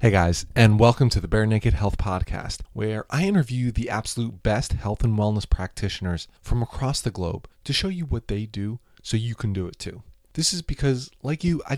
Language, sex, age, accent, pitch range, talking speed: English, male, 20-39, American, 100-135 Hz, 215 wpm